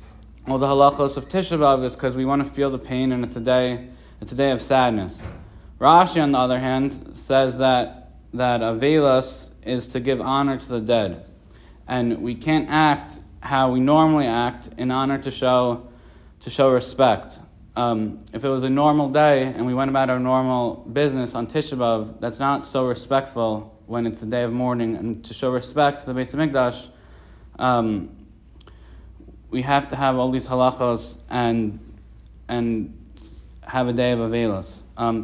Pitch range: 115-140 Hz